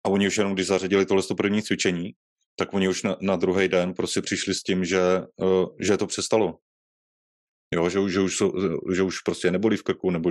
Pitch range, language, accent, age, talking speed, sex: 90-95 Hz, Czech, native, 30-49, 215 wpm, male